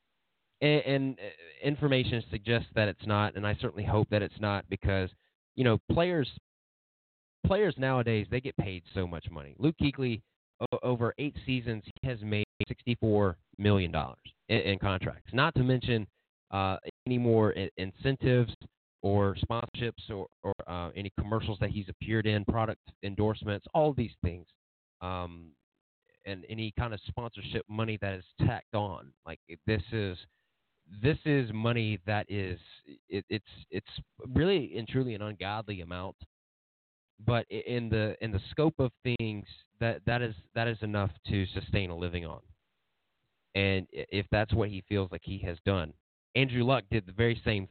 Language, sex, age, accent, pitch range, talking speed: English, male, 30-49, American, 95-120 Hz, 155 wpm